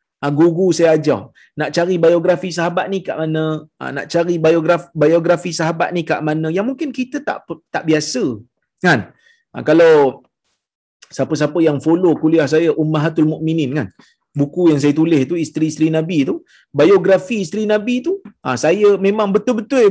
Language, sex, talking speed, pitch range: Malayalam, male, 160 wpm, 140-195 Hz